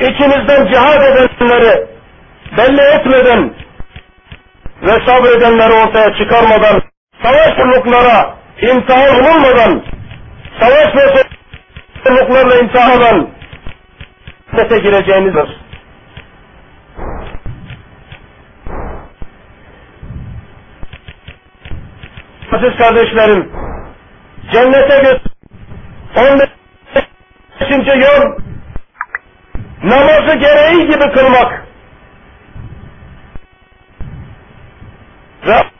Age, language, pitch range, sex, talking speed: 50-69, Turkish, 200-255 Hz, male, 50 wpm